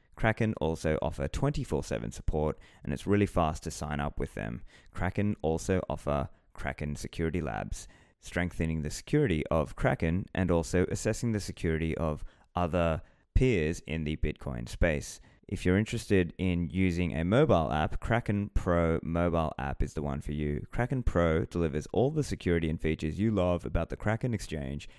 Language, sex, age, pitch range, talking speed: English, male, 20-39, 75-95 Hz, 165 wpm